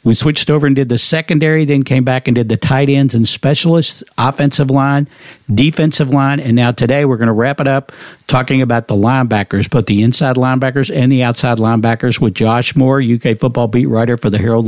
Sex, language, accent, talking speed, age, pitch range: male, English, American, 215 wpm, 50-69, 115-145 Hz